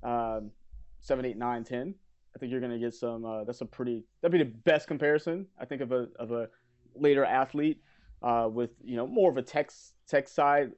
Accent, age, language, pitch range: American, 30-49, English, 115-145 Hz